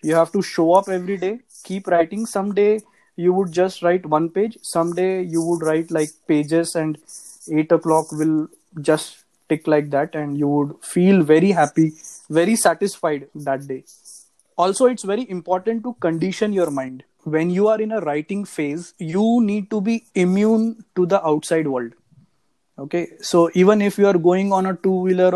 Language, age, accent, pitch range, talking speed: English, 20-39, Indian, 160-200 Hz, 175 wpm